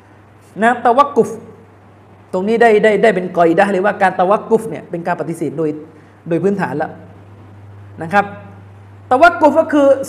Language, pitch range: Thai, 150-245 Hz